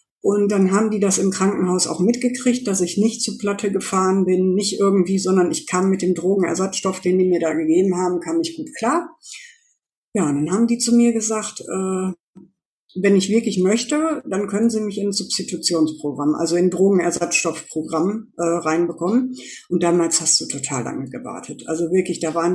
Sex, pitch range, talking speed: female, 180-230 Hz, 190 wpm